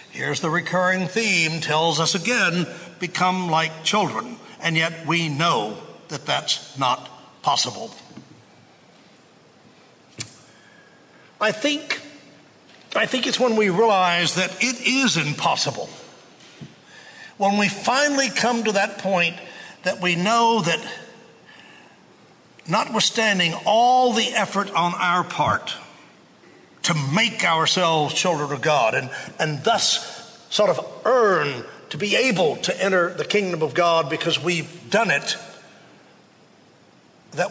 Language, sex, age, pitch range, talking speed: English, male, 60-79, 160-215 Hz, 115 wpm